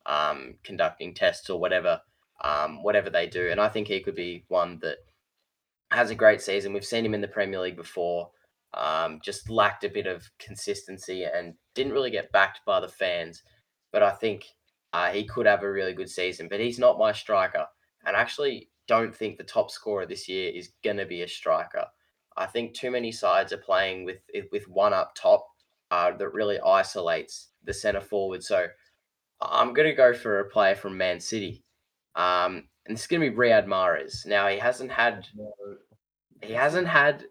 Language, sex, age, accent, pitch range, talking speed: English, male, 10-29, Australian, 95-140 Hz, 195 wpm